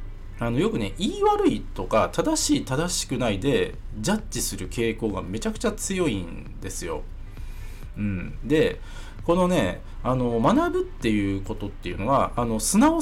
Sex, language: male, Japanese